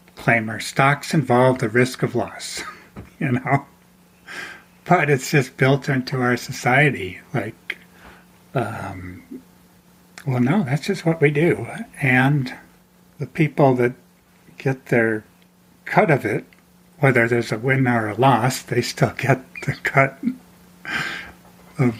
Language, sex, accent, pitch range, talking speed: English, male, American, 120-140 Hz, 125 wpm